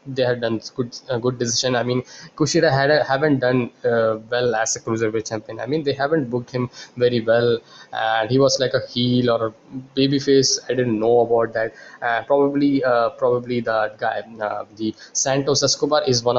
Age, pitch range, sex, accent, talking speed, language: 20-39, 115-135 Hz, male, Indian, 205 wpm, English